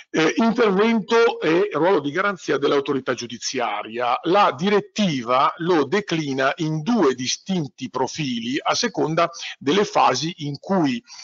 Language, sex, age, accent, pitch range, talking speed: Italian, male, 50-69, native, 135-200 Hz, 120 wpm